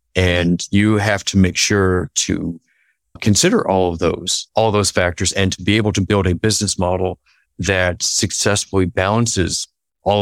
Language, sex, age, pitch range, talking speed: English, male, 40-59, 90-105 Hz, 160 wpm